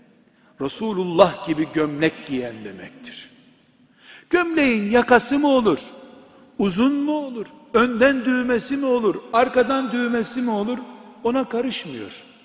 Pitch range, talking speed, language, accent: 145-245 Hz, 105 wpm, Turkish, native